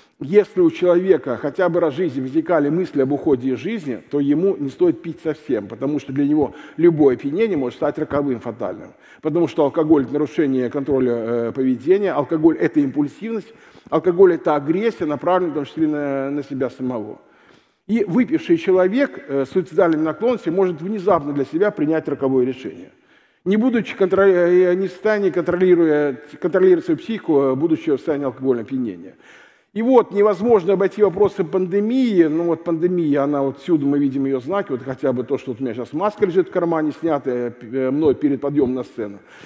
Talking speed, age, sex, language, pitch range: 175 wpm, 50-69, male, Russian, 145-200 Hz